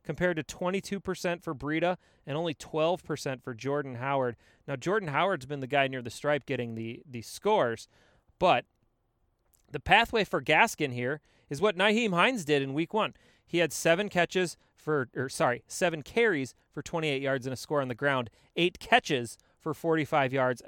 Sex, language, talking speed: male, English, 175 wpm